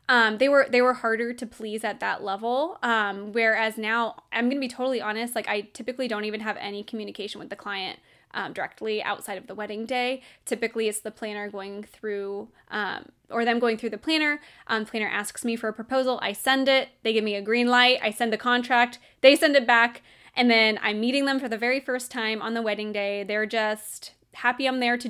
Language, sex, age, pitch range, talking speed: English, female, 10-29, 215-250 Hz, 225 wpm